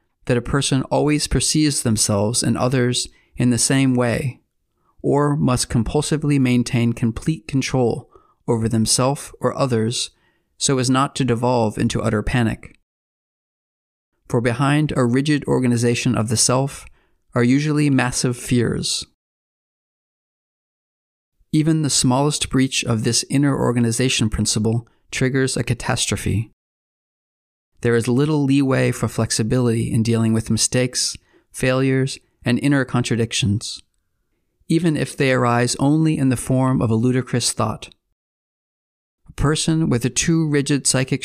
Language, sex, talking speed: English, male, 125 wpm